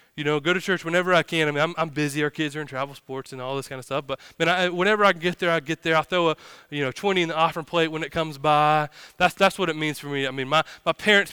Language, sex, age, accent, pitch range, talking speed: English, male, 20-39, American, 135-180 Hz, 330 wpm